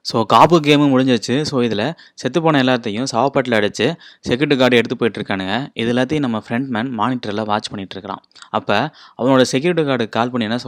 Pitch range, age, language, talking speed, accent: 105-130 Hz, 20-39, Tamil, 150 wpm, native